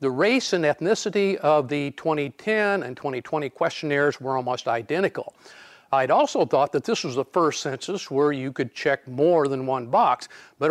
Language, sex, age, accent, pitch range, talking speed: English, male, 50-69, American, 140-185 Hz, 175 wpm